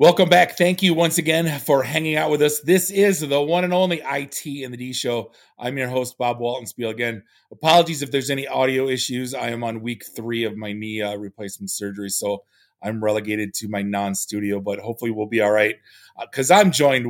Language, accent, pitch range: English, American, 105-130 Hz